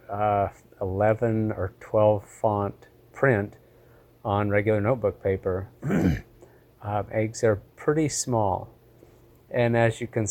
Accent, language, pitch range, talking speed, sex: American, English, 105-120 Hz, 110 wpm, male